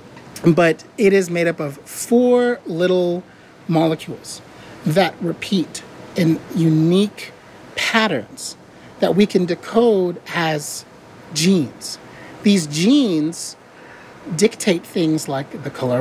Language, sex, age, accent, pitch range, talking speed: English, male, 30-49, American, 155-195 Hz, 100 wpm